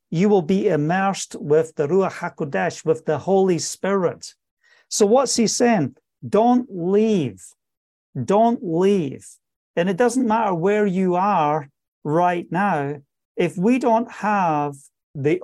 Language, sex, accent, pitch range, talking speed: English, male, British, 145-195 Hz, 130 wpm